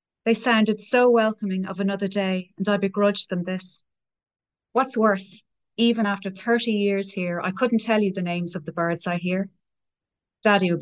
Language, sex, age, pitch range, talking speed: English, female, 30-49, 185-210 Hz, 175 wpm